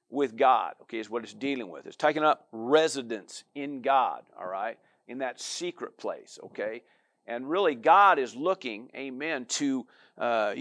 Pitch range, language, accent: 135-185 Hz, English, American